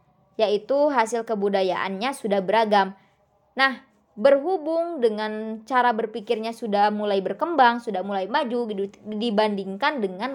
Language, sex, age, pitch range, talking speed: Indonesian, male, 20-39, 200-250 Hz, 105 wpm